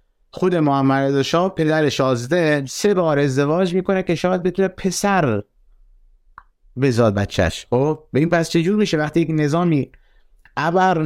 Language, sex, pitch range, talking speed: Persian, male, 130-170 Hz, 135 wpm